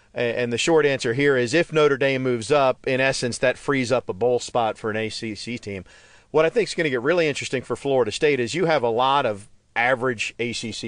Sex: male